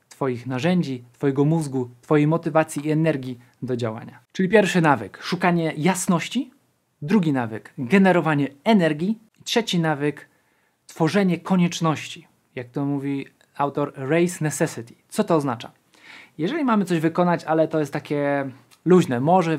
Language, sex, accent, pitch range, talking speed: Polish, male, native, 135-180 Hz, 130 wpm